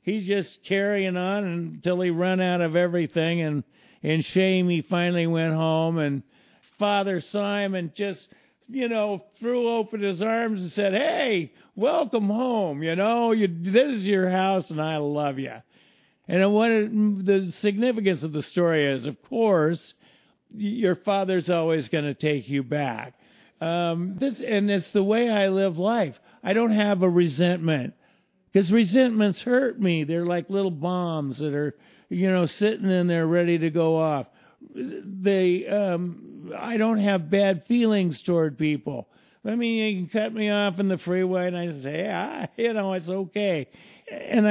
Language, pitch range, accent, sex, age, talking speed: English, 165-210 Hz, American, male, 50-69, 165 wpm